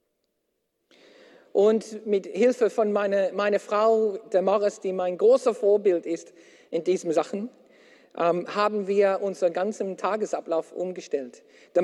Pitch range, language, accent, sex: 185-235 Hz, German, German, male